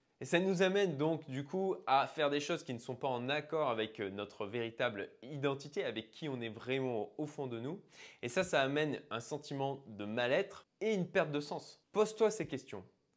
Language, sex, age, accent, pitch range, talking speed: French, male, 20-39, French, 125-170 Hz, 210 wpm